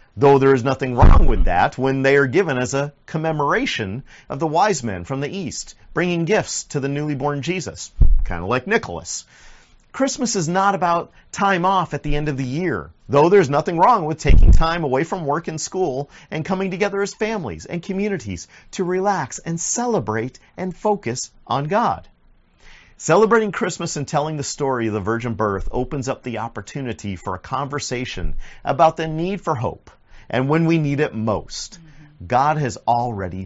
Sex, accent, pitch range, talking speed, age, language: male, American, 115-170 Hz, 185 wpm, 40-59, English